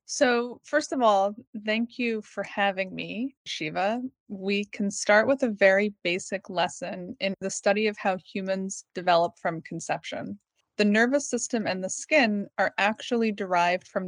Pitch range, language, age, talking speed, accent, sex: 190-230 Hz, English, 30-49, 160 wpm, American, female